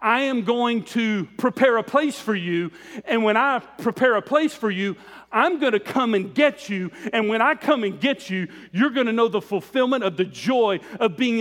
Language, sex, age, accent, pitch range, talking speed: English, male, 40-59, American, 210-280 Hz, 220 wpm